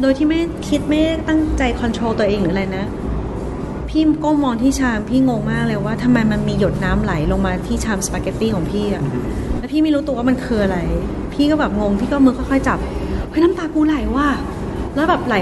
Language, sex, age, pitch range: Thai, female, 30-49, 175-270 Hz